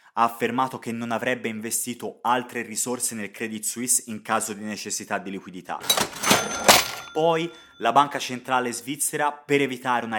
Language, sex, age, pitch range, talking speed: Italian, male, 20-39, 110-125 Hz, 145 wpm